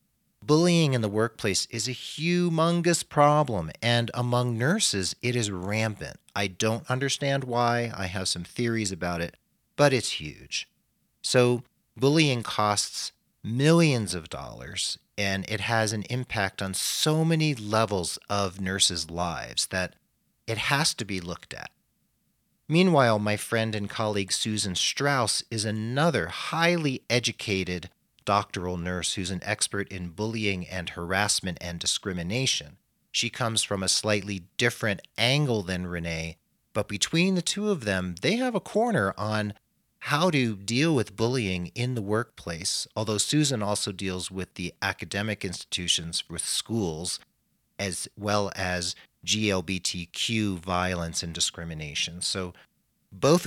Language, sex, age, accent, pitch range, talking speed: English, male, 40-59, American, 95-125 Hz, 135 wpm